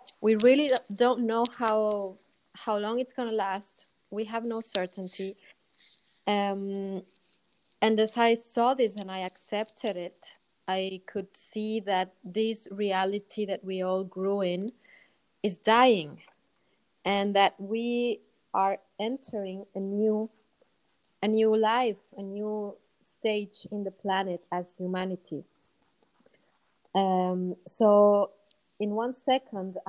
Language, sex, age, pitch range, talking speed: English, female, 30-49, 185-220 Hz, 120 wpm